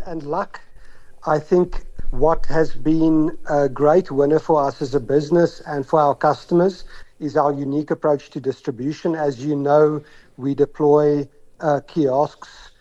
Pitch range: 145-165 Hz